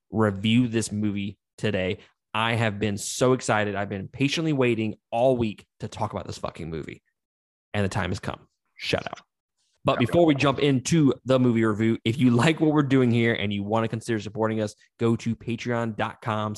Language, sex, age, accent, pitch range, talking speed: English, male, 20-39, American, 100-120 Hz, 190 wpm